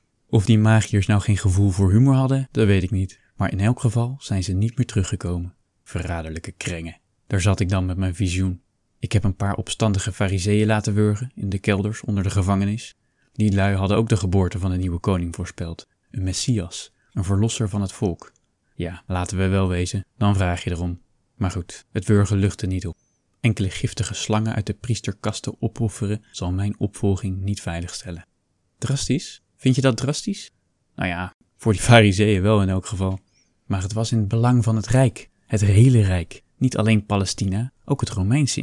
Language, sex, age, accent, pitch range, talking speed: Dutch, male, 20-39, Dutch, 95-115 Hz, 190 wpm